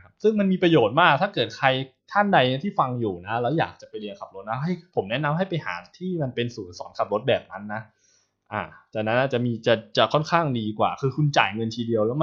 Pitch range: 105-155 Hz